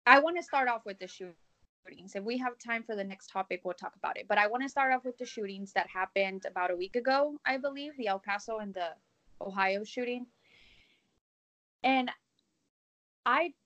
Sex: female